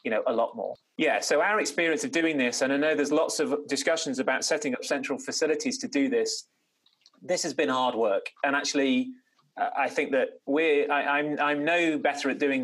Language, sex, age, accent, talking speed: English, male, 30-49, British, 220 wpm